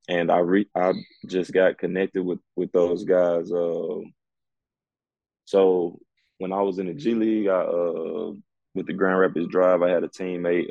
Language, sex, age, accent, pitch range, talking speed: English, male, 20-39, American, 85-95 Hz, 170 wpm